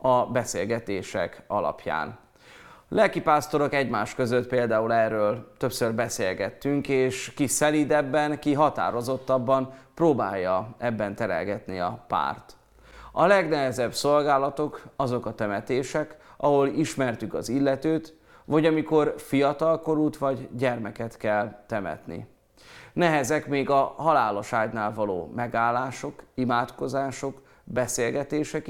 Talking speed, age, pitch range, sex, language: 95 wpm, 30-49, 110-140 Hz, male, Hungarian